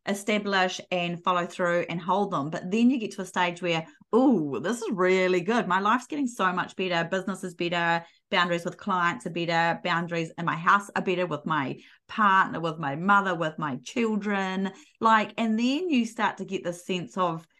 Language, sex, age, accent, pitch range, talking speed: English, female, 30-49, Australian, 175-220 Hz, 200 wpm